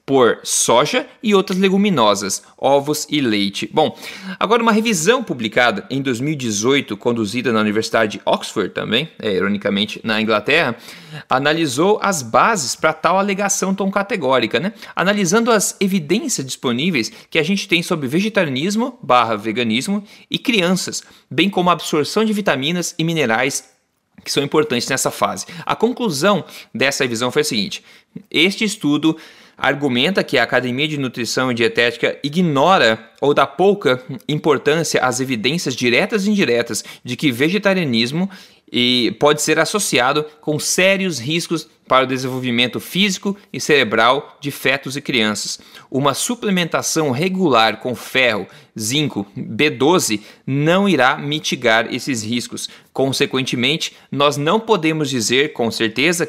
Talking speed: 135 wpm